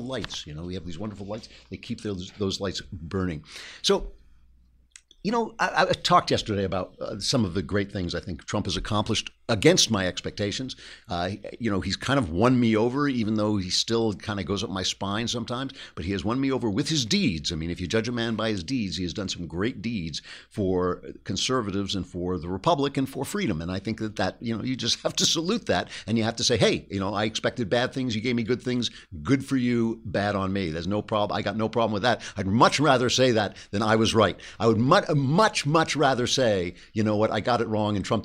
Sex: male